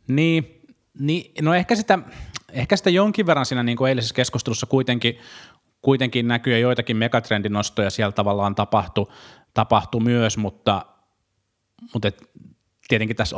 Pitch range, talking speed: 100-125 Hz, 130 wpm